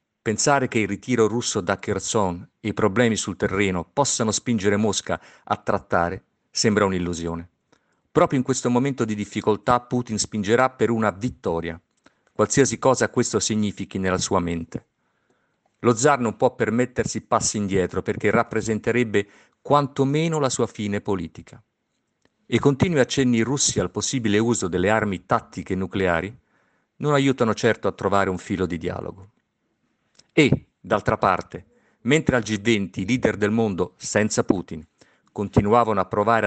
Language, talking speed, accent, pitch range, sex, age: Italian, 140 wpm, native, 95-120 Hz, male, 50-69